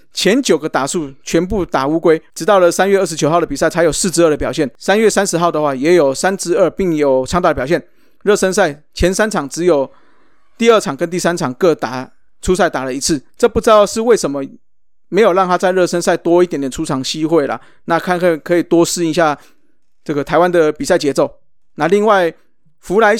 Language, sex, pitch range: Chinese, male, 150-185 Hz